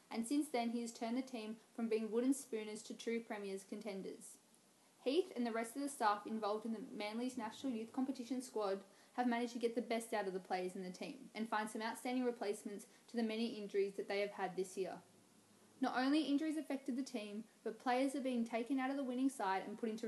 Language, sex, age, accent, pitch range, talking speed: English, female, 10-29, Australian, 200-245 Hz, 235 wpm